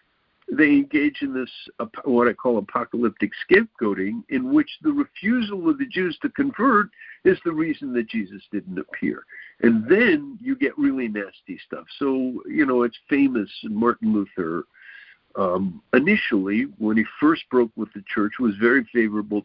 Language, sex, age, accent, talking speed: English, male, 60-79, American, 155 wpm